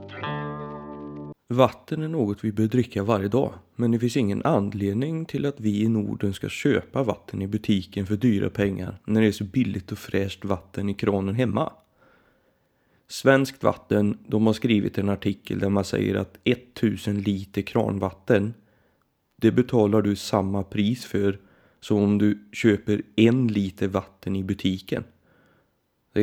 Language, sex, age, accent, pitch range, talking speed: Swedish, male, 30-49, native, 100-110 Hz, 155 wpm